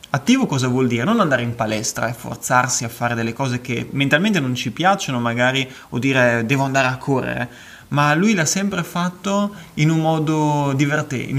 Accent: native